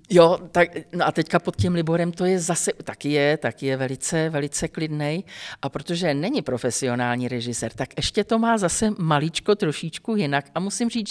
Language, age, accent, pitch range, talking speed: Czech, 50-69, native, 145-205 Hz, 185 wpm